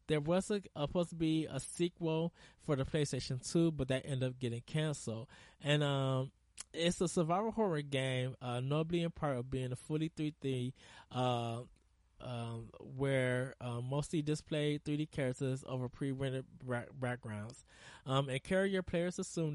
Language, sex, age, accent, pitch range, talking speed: English, male, 20-39, American, 120-150 Hz, 155 wpm